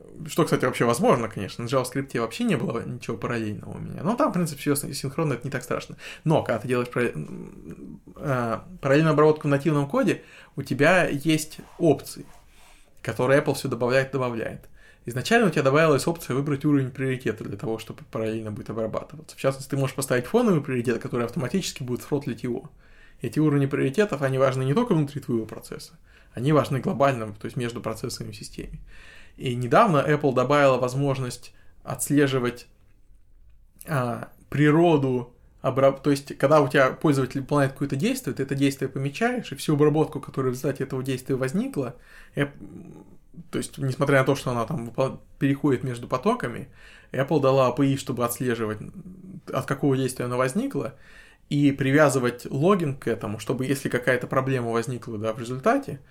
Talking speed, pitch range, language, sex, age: 160 wpm, 125-150 Hz, Russian, male, 20-39